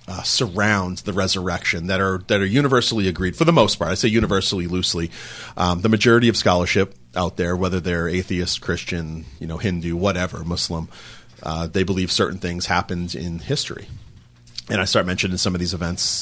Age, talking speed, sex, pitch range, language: 30-49, 185 wpm, male, 85-95 Hz, English